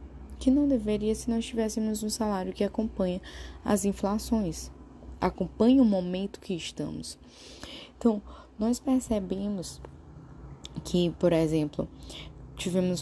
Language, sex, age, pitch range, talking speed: Portuguese, female, 10-29, 165-225 Hz, 110 wpm